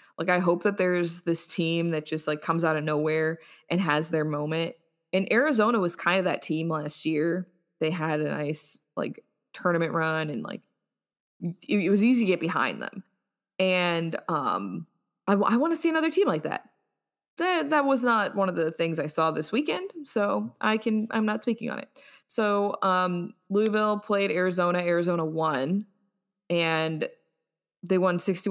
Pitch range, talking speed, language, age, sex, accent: 165-200 Hz, 180 wpm, English, 20-39, female, American